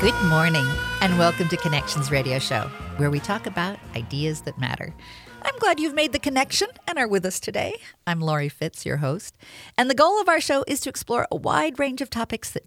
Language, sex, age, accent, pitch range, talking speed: English, female, 50-69, American, 145-235 Hz, 220 wpm